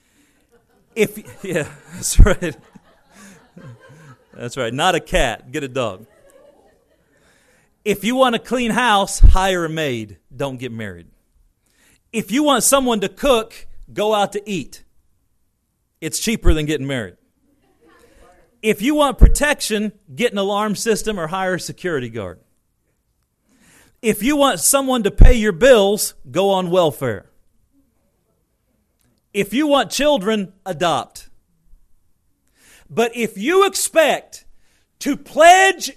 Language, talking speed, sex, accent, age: English, 125 wpm, male, American, 40-59